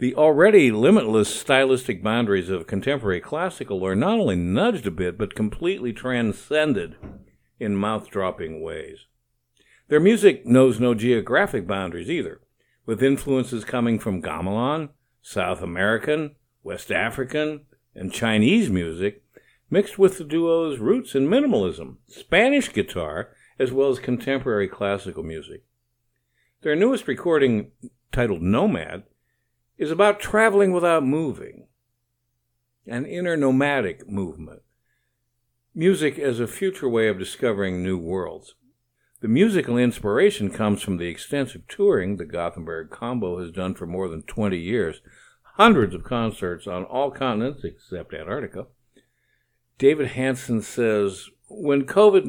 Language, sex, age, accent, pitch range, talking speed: English, male, 60-79, American, 105-140 Hz, 125 wpm